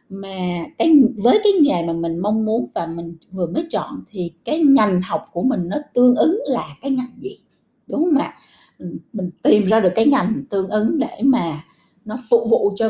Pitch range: 180-255 Hz